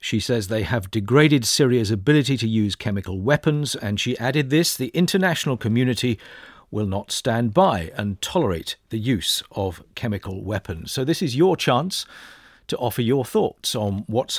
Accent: British